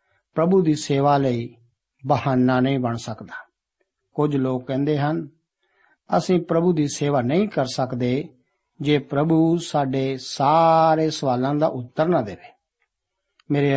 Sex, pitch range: male, 130-165 Hz